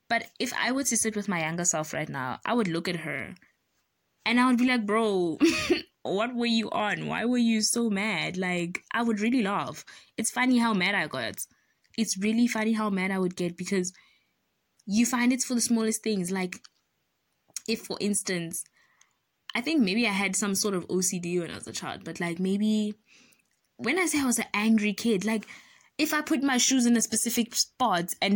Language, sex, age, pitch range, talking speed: English, female, 20-39, 185-245 Hz, 210 wpm